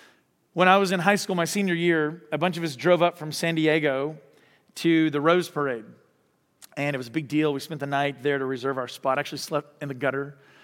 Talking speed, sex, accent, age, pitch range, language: 245 wpm, male, American, 40-59, 150-190 Hz, English